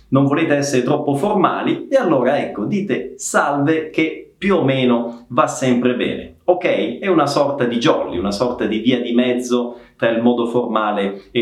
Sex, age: male, 30-49